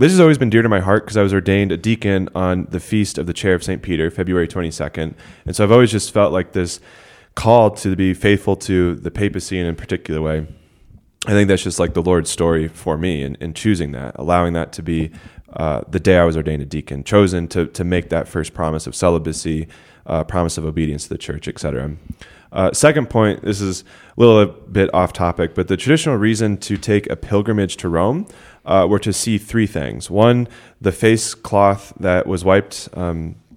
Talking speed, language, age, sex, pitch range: 220 wpm, English, 20-39, male, 85-105 Hz